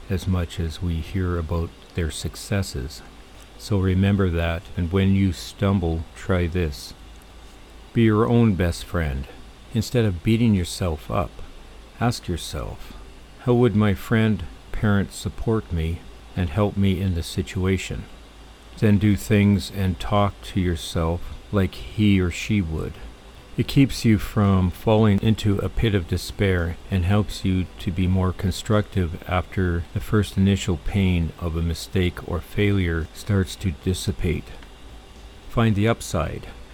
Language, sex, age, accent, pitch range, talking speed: English, male, 50-69, American, 85-105 Hz, 140 wpm